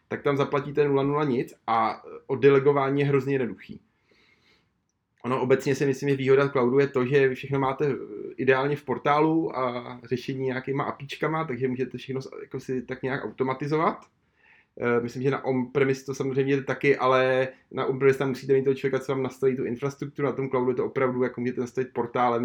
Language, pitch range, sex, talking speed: Czech, 125-135 Hz, male, 180 wpm